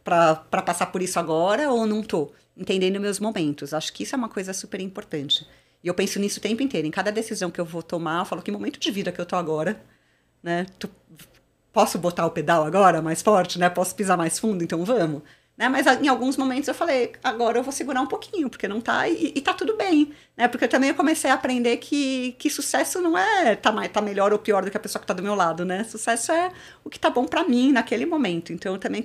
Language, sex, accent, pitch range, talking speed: Portuguese, female, Brazilian, 180-250 Hz, 250 wpm